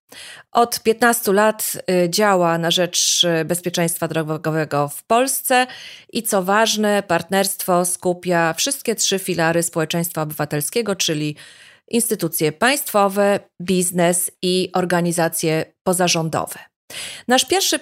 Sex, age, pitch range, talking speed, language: female, 30-49, 170-210 Hz, 100 wpm, Polish